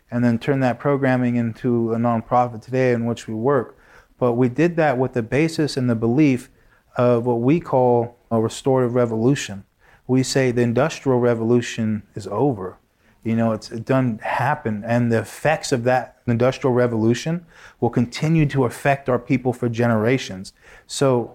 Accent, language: American, English